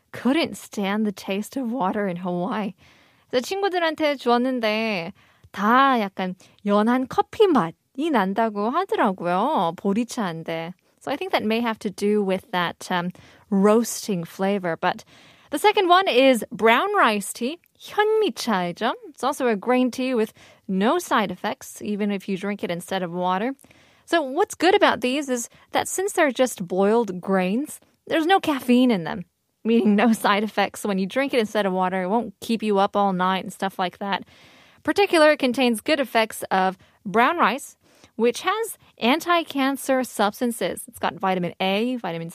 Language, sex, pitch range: Korean, female, 195-260 Hz